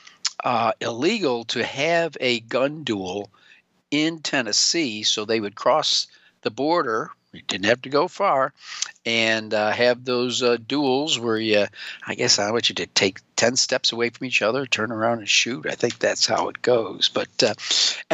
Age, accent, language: 50-69, American, English